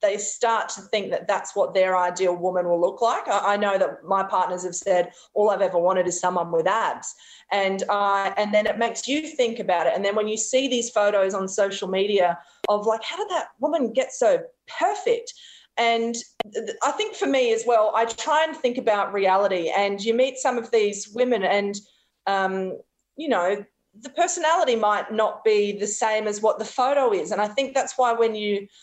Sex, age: female, 30-49